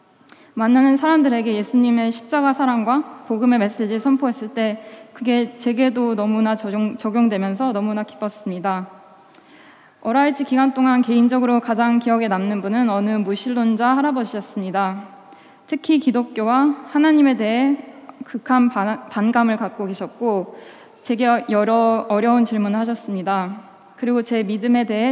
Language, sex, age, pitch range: Korean, female, 20-39, 205-250 Hz